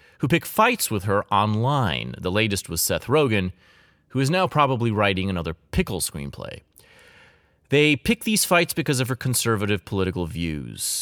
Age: 30-49